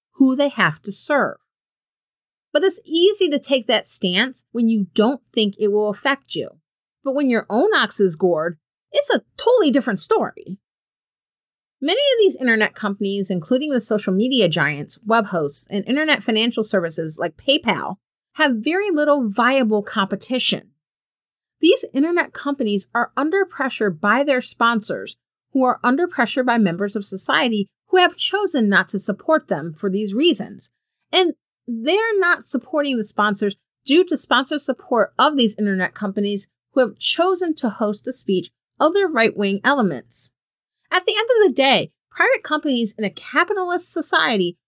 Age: 40-59